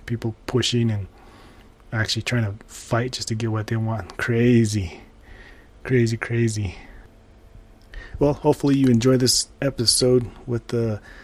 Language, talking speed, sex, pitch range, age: English, 130 wpm, male, 115-125 Hz, 20-39